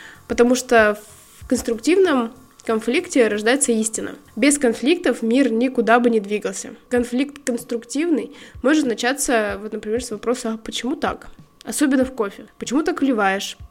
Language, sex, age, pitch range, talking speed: Russian, female, 20-39, 225-265 Hz, 125 wpm